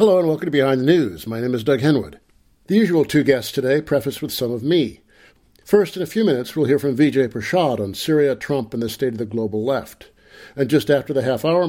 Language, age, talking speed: English, 50-69, 240 wpm